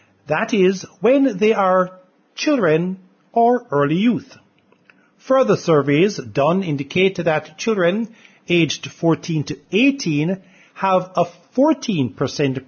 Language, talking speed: English, 105 wpm